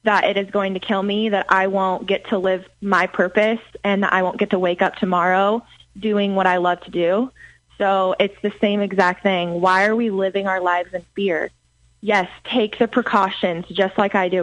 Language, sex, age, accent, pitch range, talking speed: English, female, 20-39, American, 185-225 Hz, 210 wpm